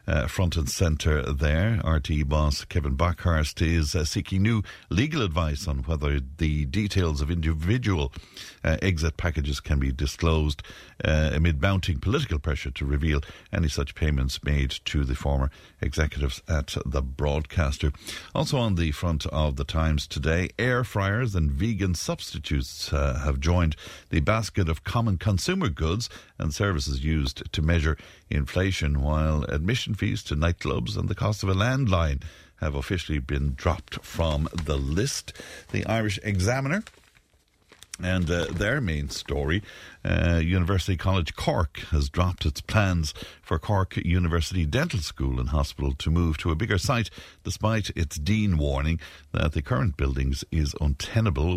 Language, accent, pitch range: English, Irish, 75-95 Hz